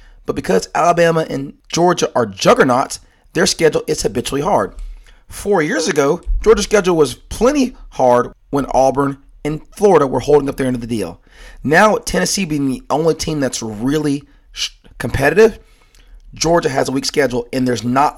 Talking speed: 165 wpm